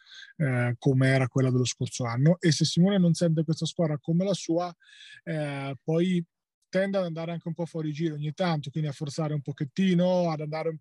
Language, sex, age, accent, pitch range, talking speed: Italian, male, 20-39, native, 140-165 Hz, 200 wpm